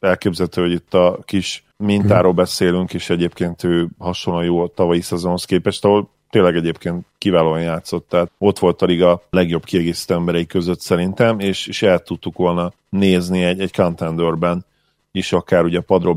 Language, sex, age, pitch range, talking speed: Hungarian, male, 40-59, 85-95 Hz, 155 wpm